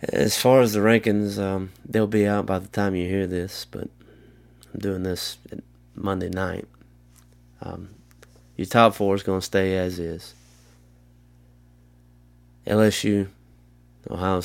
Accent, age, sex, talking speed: American, 20-39, male, 135 wpm